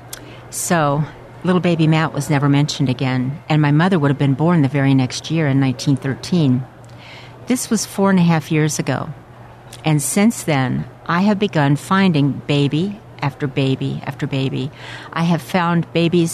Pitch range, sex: 140-170 Hz, female